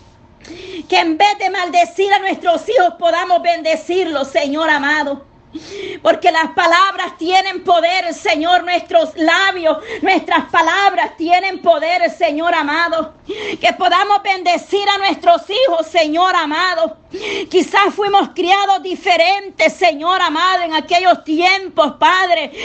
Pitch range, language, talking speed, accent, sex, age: 325-375 Hz, Spanish, 115 wpm, American, female, 40-59